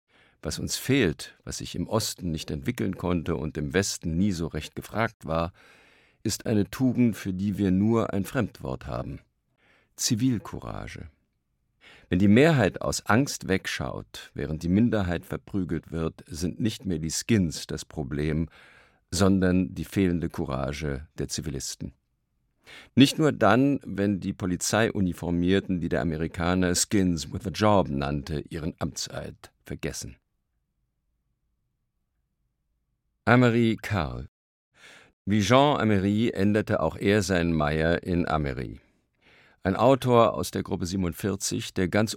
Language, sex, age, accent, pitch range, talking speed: German, male, 50-69, German, 80-105 Hz, 130 wpm